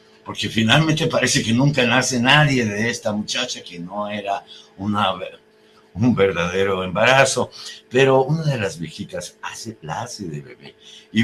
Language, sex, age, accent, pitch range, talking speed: Spanish, male, 60-79, Mexican, 100-140 Hz, 145 wpm